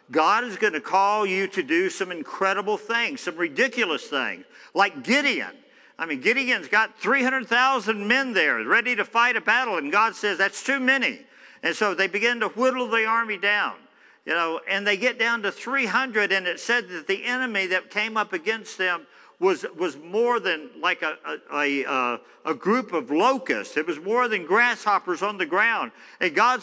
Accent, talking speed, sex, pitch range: American, 190 wpm, male, 175-255 Hz